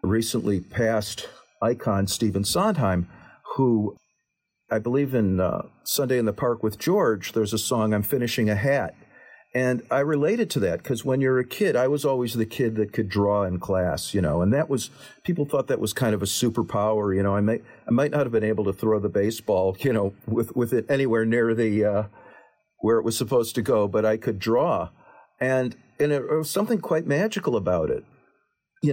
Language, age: English, 50-69